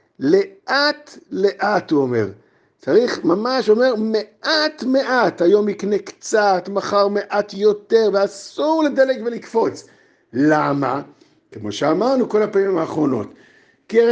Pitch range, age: 190-265 Hz, 50-69